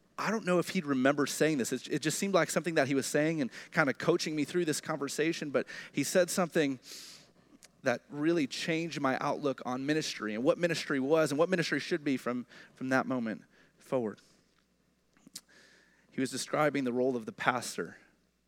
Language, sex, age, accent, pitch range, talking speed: English, male, 30-49, American, 135-185 Hz, 190 wpm